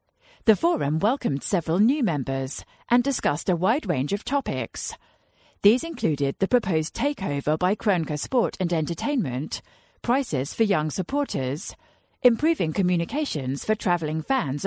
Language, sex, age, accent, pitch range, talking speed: English, female, 40-59, British, 145-225 Hz, 130 wpm